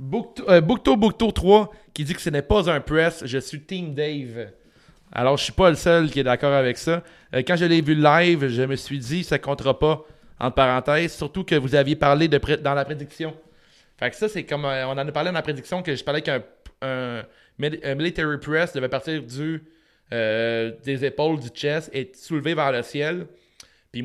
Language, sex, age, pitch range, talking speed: French, male, 30-49, 135-165 Hz, 230 wpm